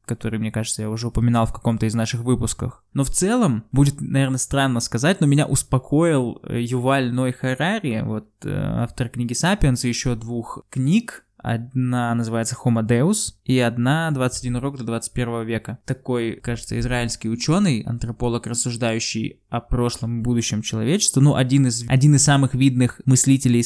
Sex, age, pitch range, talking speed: male, 20-39, 120-135 Hz, 150 wpm